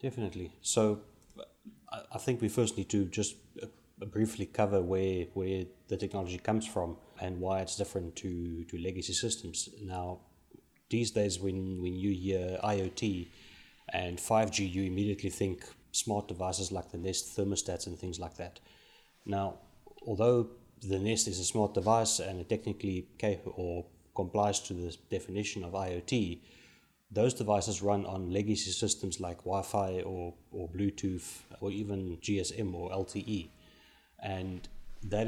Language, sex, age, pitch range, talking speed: English, male, 30-49, 90-105 Hz, 145 wpm